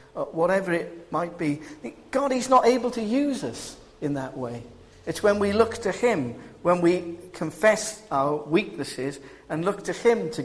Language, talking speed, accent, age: English, 170 wpm, British, 50-69